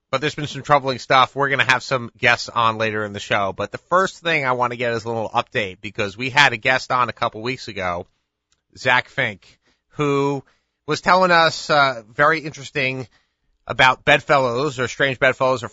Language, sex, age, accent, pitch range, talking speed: English, male, 30-49, American, 105-135 Hz, 210 wpm